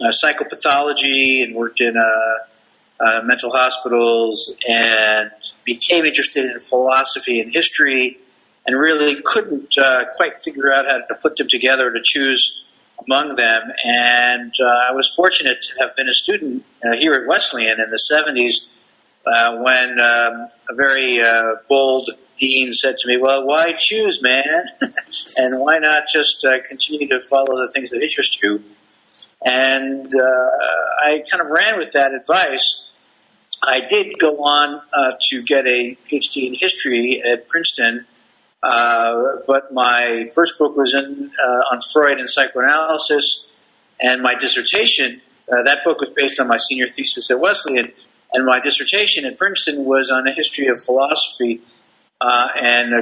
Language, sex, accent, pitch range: English, male, American, 120-145 Hz